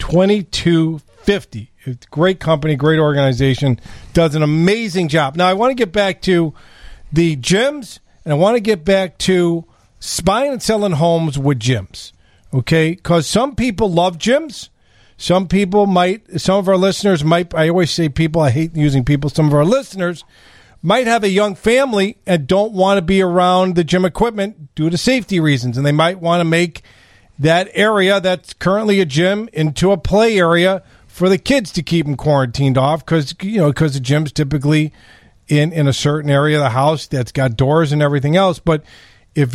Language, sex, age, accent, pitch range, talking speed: English, male, 40-59, American, 145-190 Hz, 185 wpm